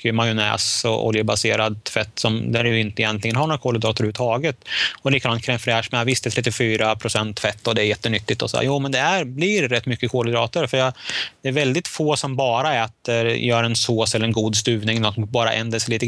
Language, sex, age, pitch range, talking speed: Swedish, male, 30-49, 110-130 Hz, 210 wpm